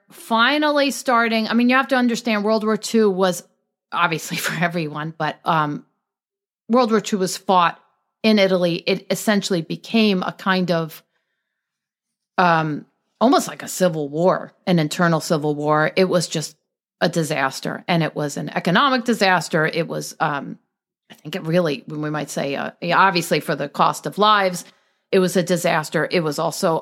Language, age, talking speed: English, 40-59, 170 wpm